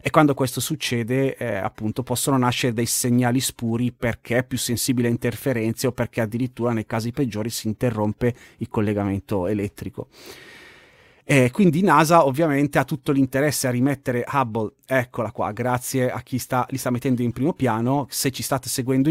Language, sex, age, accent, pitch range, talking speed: Italian, male, 30-49, native, 115-140 Hz, 165 wpm